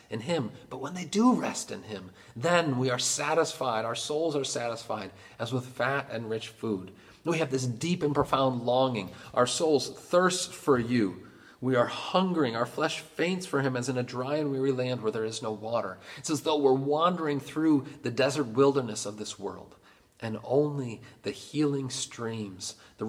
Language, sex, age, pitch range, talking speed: English, male, 40-59, 95-135 Hz, 190 wpm